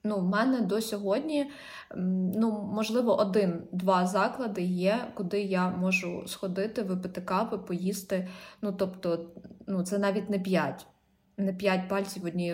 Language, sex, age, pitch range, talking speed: Ukrainian, female, 20-39, 185-220 Hz, 135 wpm